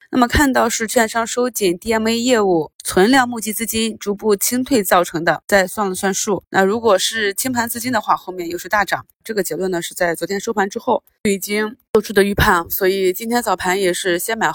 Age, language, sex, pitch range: 20-39, Chinese, female, 175-210 Hz